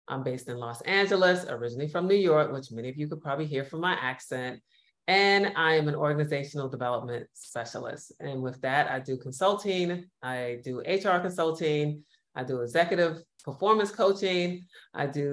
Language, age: English, 30-49